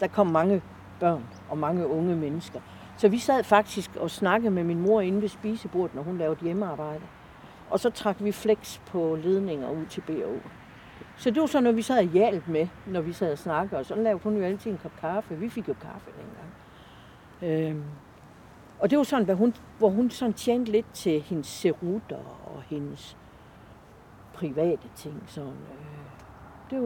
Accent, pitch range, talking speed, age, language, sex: native, 155-215 Hz, 190 wpm, 60-79, Danish, female